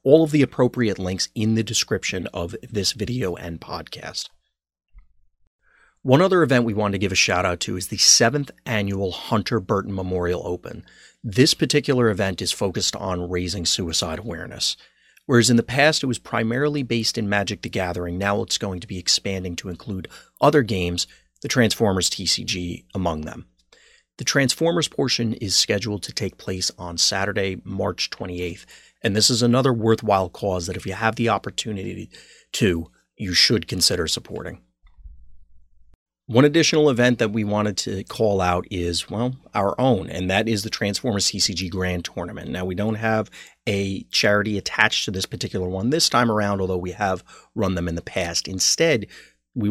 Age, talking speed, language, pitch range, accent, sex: 30-49, 170 wpm, English, 90-120 Hz, American, male